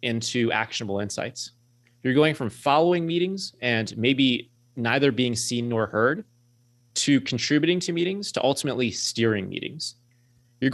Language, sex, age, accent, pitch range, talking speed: English, male, 30-49, American, 115-135 Hz, 135 wpm